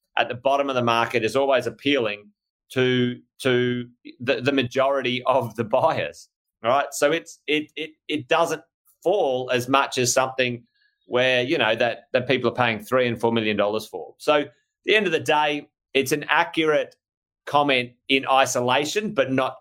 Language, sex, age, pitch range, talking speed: English, male, 30-49, 115-150 Hz, 175 wpm